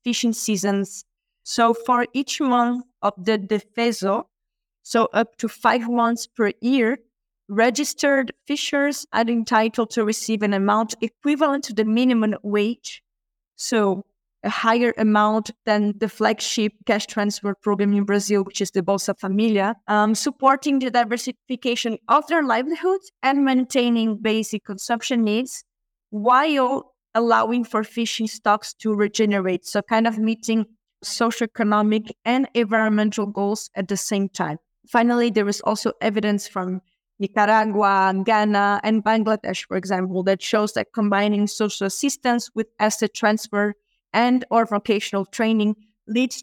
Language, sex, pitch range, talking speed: English, female, 205-235 Hz, 135 wpm